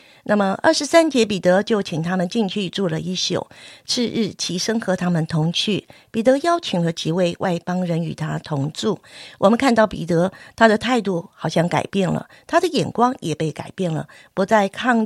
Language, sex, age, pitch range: Chinese, female, 50-69, 175-230 Hz